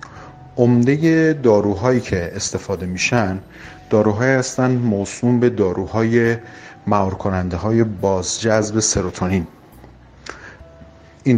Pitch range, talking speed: 95-120 Hz, 85 wpm